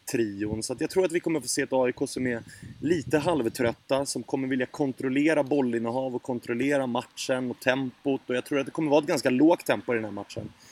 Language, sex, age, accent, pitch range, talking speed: English, male, 30-49, Swedish, 120-150 Hz, 235 wpm